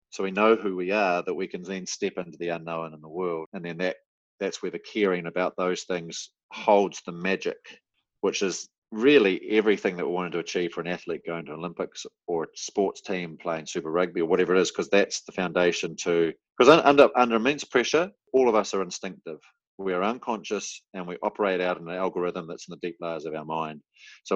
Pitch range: 85-105 Hz